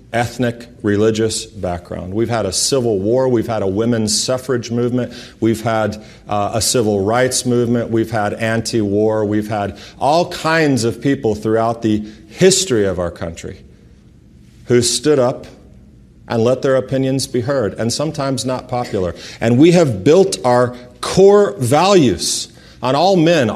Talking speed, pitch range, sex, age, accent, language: 150 wpm, 105-130 Hz, male, 40-59, American, English